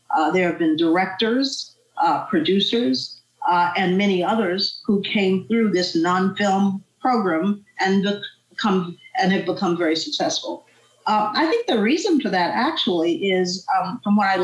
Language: English